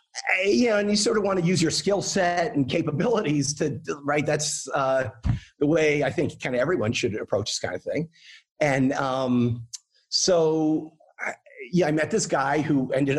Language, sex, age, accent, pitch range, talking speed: English, male, 40-59, American, 130-165 Hz, 195 wpm